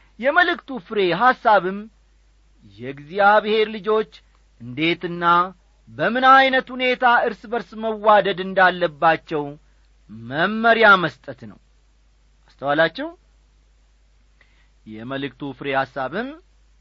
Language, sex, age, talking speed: Amharic, male, 50-69, 70 wpm